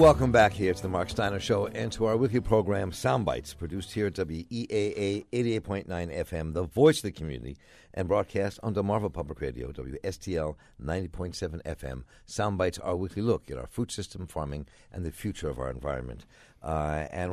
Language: English